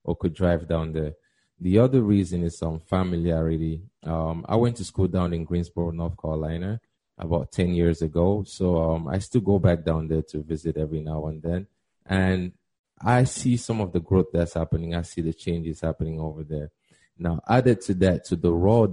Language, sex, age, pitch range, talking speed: English, male, 20-39, 80-90 Hz, 195 wpm